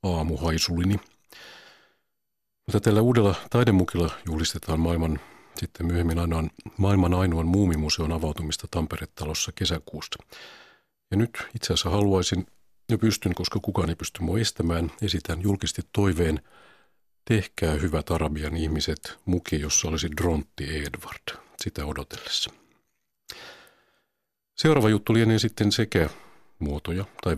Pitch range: 80-100 Hz